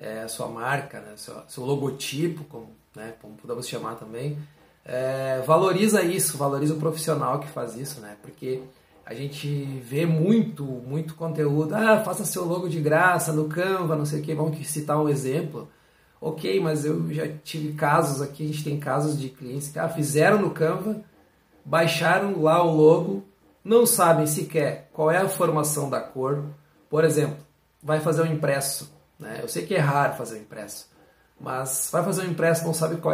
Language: Portuguese